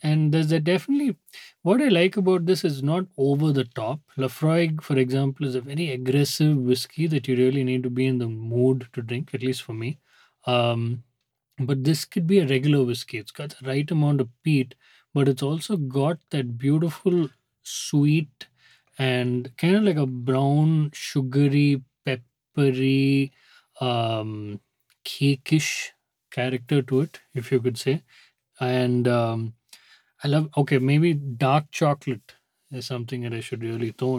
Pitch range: 125-155 Hz